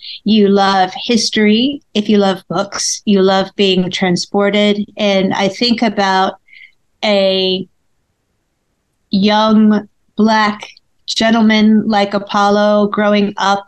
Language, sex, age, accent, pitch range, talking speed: English, female, 40-59, American, 195-235 Hz, 100 wpm